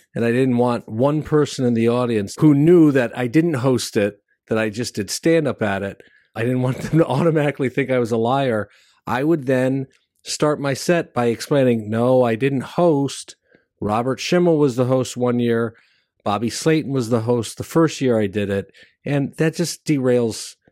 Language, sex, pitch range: English, male, 115-150 Hz